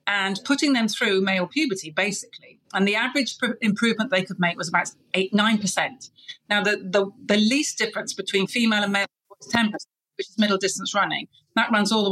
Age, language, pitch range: 40-59, English, 180-230 Hz